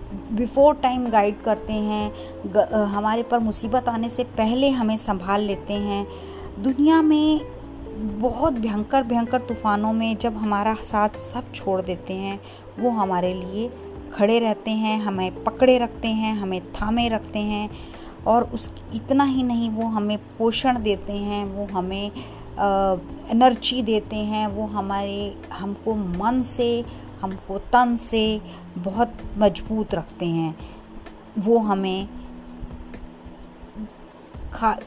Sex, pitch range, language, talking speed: female, 190-230 Hz, Punjabi, 125 wpm